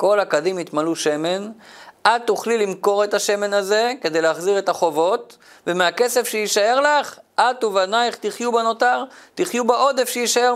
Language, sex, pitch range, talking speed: Hebrew, male, 185-235 Hz, 135 wpm